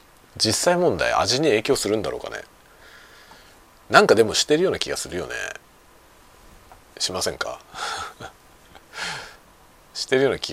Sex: male